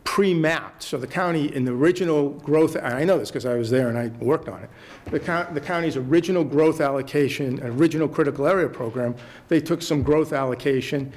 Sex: male